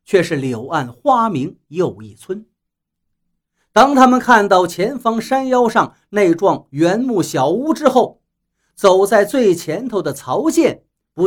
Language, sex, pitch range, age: Chinese, male, 160-255 Hz, 50-69